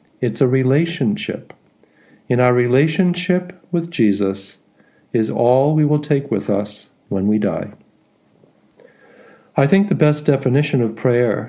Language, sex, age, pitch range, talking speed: English, male, 50-69, 110-150 Hz, 130 wpm